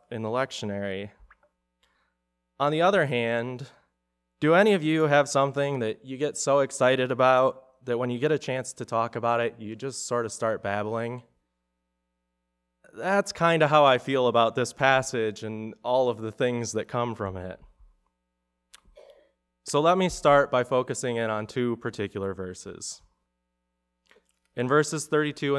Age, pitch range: 20-39, 95-135 Hz